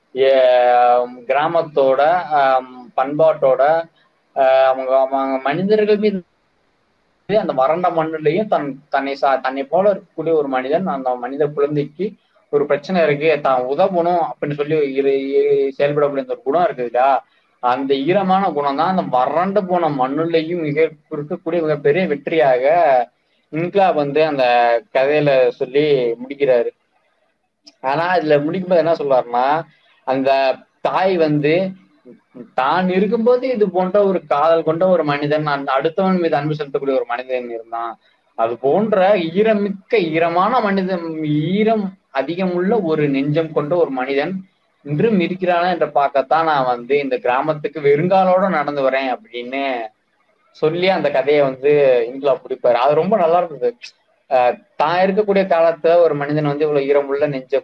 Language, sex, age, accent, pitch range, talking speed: Tamil, male, 20-39, native, 135-185 Hz, 125 wpm